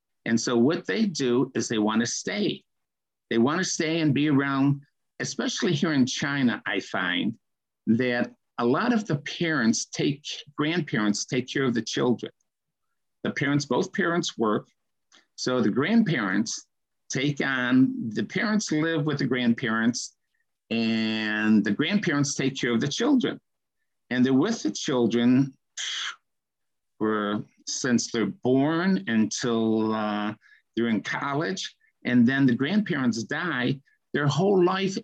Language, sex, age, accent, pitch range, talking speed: English, male, 50-69, American, 120-200 Hz, 140 wpm